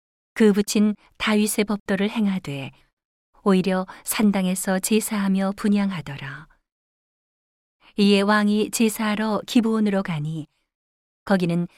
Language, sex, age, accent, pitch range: Korean, female, 40-59, native, 180-210 Hz